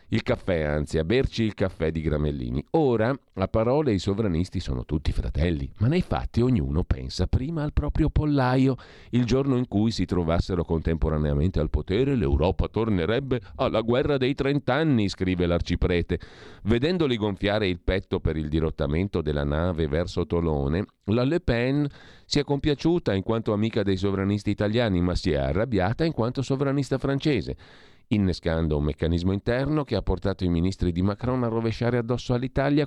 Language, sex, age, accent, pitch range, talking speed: Italian, male, 50-69, native, 80-115 Hz, 160 wpm